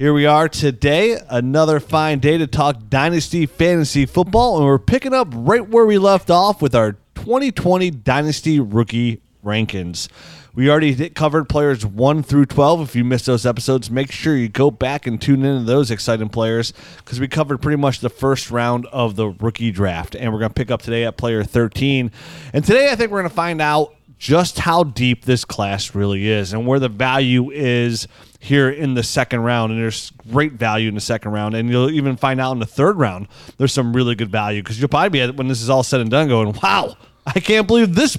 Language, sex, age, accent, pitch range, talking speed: English, male, 30-49, American, 120-175 Hz, 215 wpm